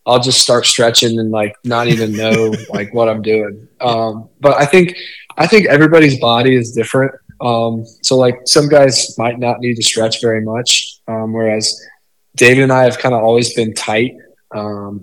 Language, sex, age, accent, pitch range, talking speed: English, male, 20-39, American, 110-130 Hz, 190 wpm